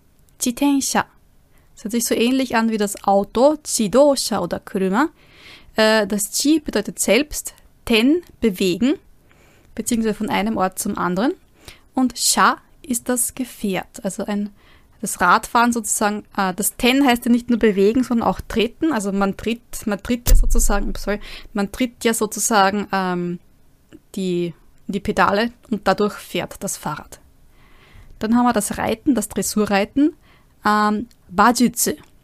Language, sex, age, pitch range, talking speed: German, female, 20-39, 200-245 Hz, 135 wpm